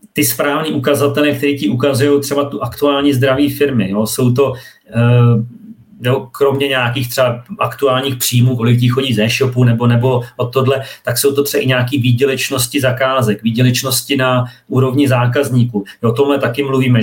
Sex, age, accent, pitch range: male, 40-59, native, 125-140 Hz